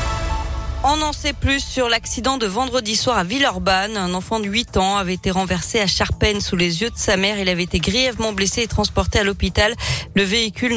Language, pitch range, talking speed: French, 170-210 Hz, 210 wpm